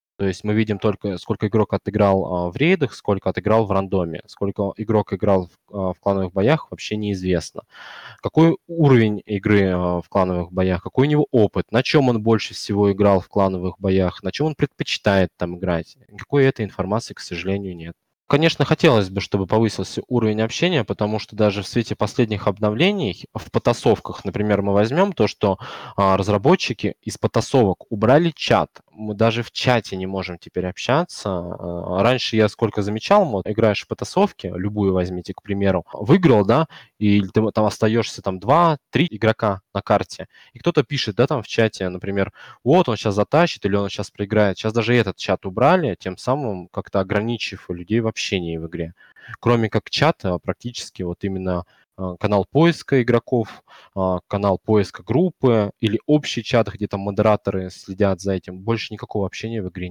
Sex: male